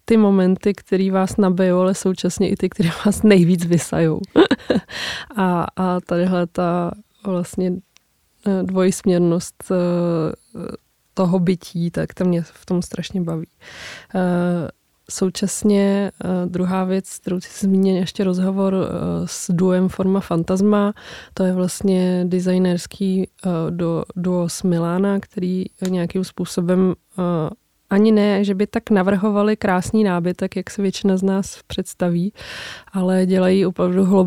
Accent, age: native, 20-39